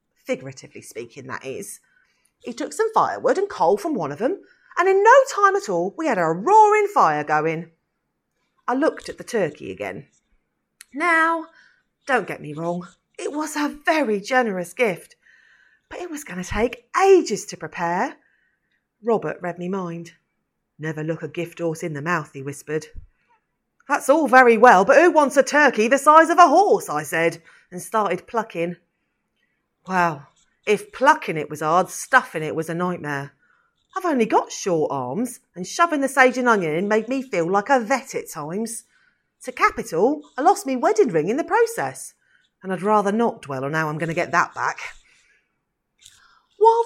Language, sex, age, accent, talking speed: English, female, 30-49, British, 180 wpm